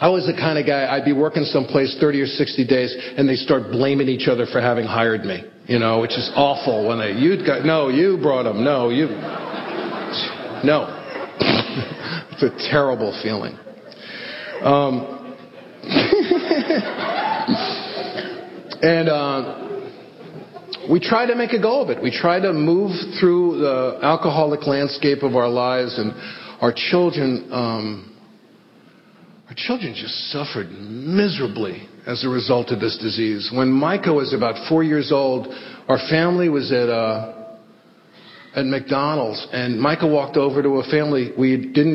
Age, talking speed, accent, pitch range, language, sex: 50-69, 150 wpm, American, 125-155 Hz, English, male